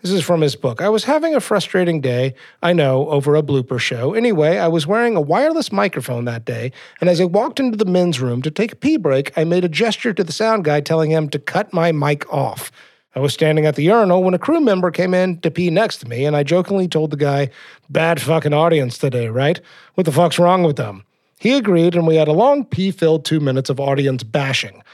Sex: male